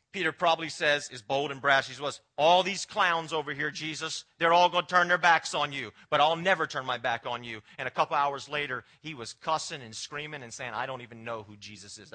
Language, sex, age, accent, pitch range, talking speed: English, male, 40-59, American, 115-150 Hz, 250 wpm